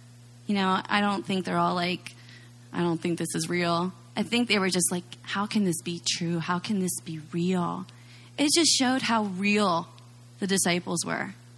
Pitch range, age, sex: 175-260 Hz, 30-49, female